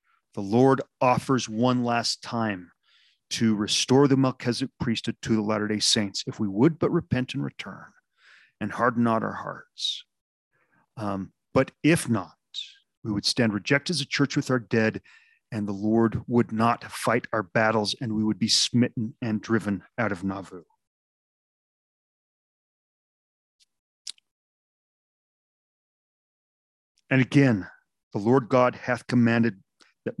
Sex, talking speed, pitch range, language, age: male, 135 wpm, 115-140 Hz, English, 40-59